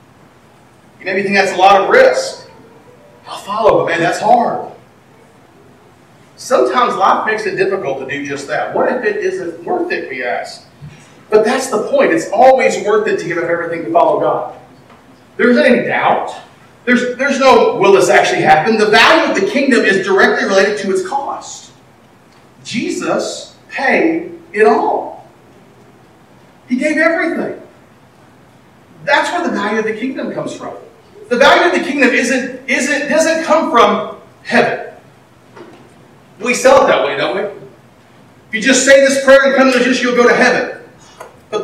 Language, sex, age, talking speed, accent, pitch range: English, male, 40-59, 165 wpm, American, 235-320 Hz